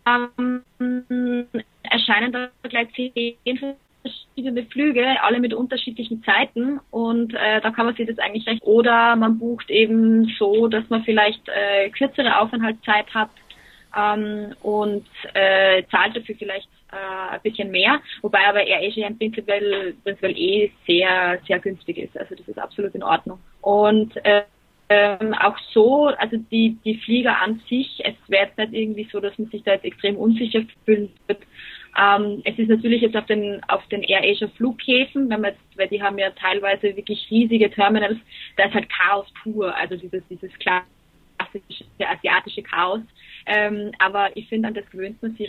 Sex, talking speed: female, 160 wpm